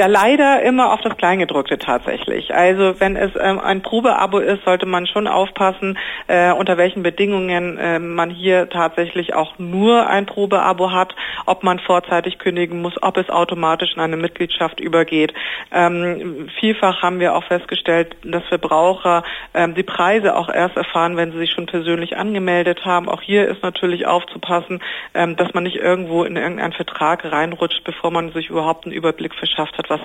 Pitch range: 160-185 Hz